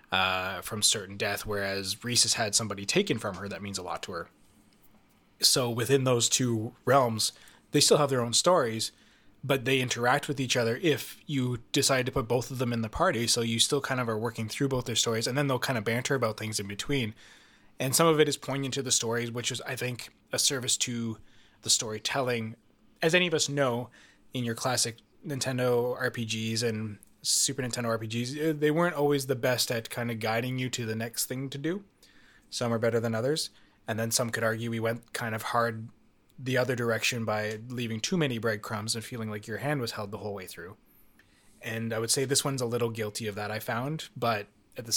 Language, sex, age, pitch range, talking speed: English, male, 20-39, 110-135 Hz, 220 wpm